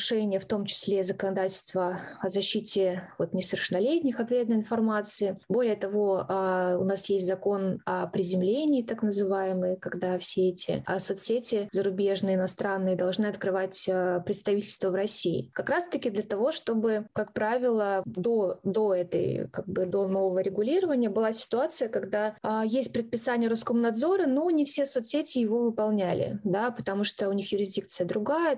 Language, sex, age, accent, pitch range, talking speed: Russian, female, 20-39, native, 190-230 Hz, 140 wpm